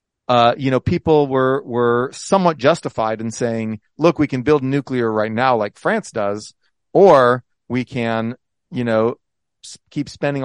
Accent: American